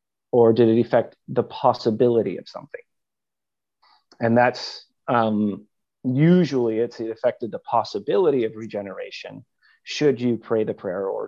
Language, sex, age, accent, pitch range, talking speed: English, male, 30-49, American, 110-135 Hz, 130 wpm